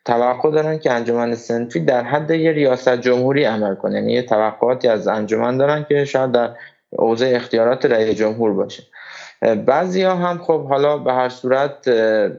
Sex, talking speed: male, 165 wpm